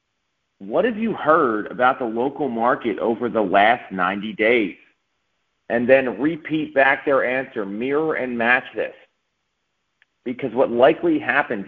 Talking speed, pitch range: 140 wpm, 115-150 Hz